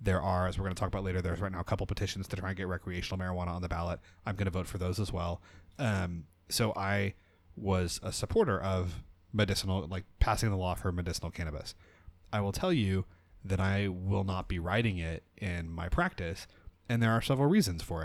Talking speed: 225 wpm